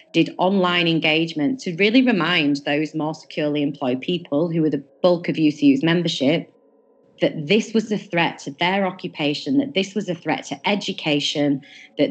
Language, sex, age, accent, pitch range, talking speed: English, female, 30-49, British, 150-185 Hz, 170 wpm